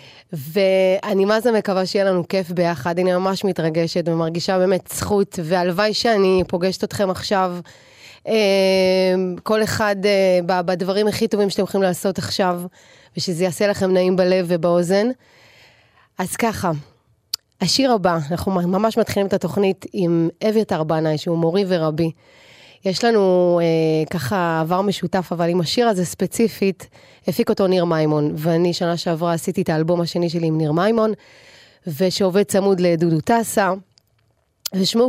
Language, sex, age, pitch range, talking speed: English, female, 20-39, 175-205 Hz, 110 wpm